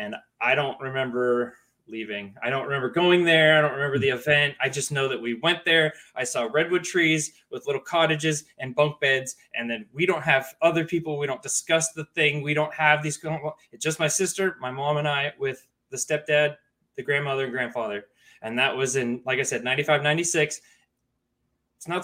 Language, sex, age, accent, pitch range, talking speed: English, male, 20-39, American, 145-190 Hz, 200 wpm